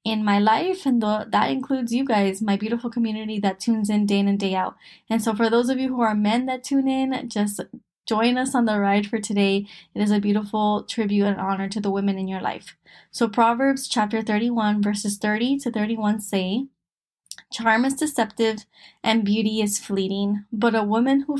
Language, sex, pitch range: English, female, 205-230 Hz